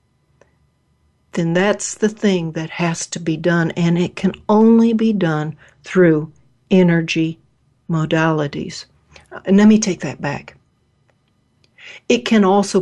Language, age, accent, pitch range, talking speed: English, 60-79, American, 130-195 Hz, 120 wpm